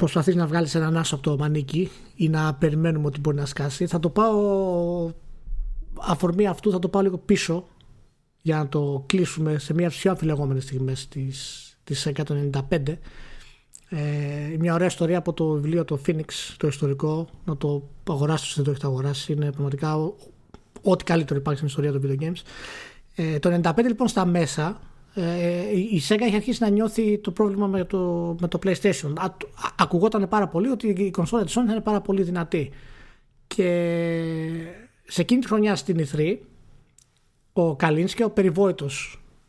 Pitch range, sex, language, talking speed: 145-195 Hz, male, Greek, 165 wpm